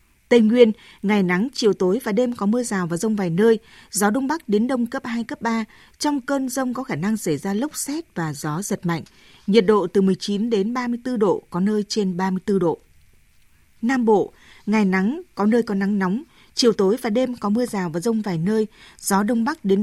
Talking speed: 225 wpm